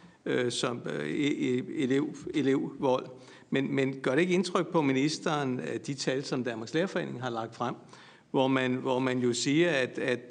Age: 60-79